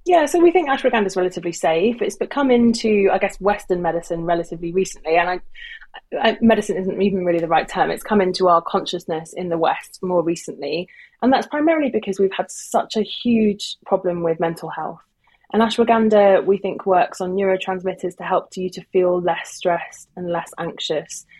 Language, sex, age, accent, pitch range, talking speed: English, female, 20-39, British, 170-210 Hz, 180 wpm